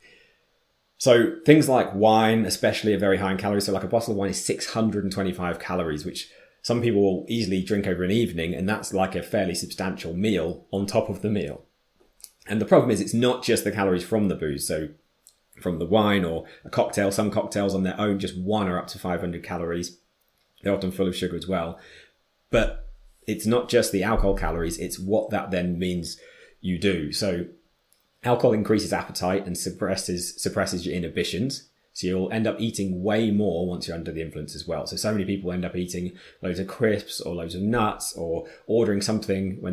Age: 30-49